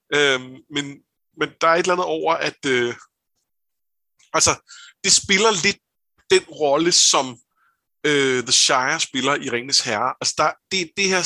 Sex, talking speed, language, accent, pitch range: male, 160 wpm, Danish, native, 135-190 Hz